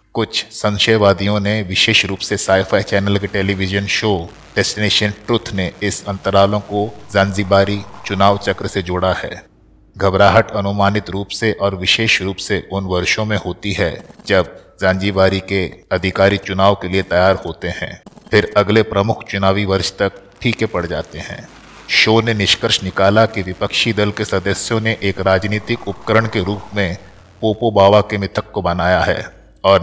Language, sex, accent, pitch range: Hindi, male, native, 95-105 Hz